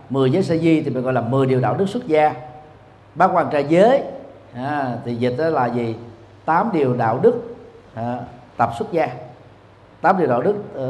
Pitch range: 115-175 Hz